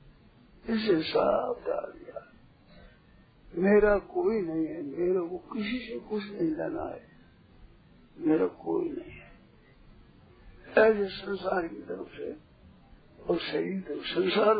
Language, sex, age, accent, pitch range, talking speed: Hindi, male, 50-69, native, 185-230 Hz, 115 wpm